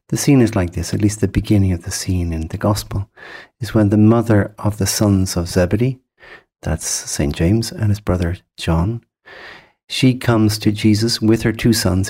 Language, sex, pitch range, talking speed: English, male, 95-110 Hz, 195 wpm